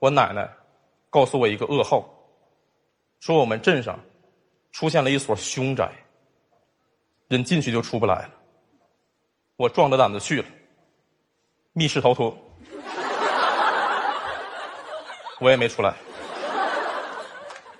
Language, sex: Chinese, male